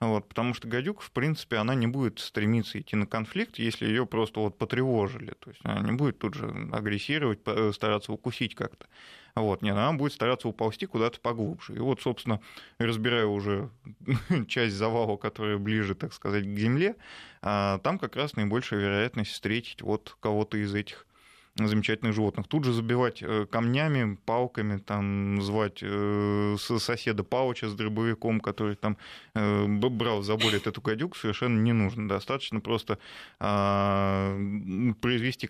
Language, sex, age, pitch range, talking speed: Russian, male, 20-39, 105-120 Hz, 150 wpm